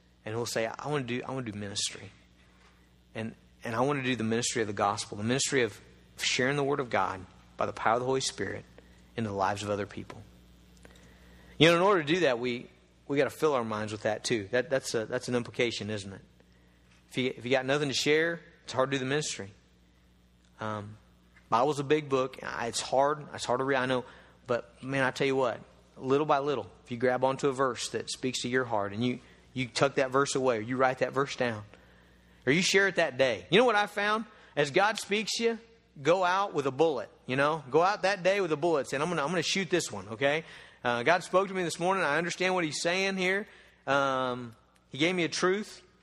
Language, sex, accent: English, male, American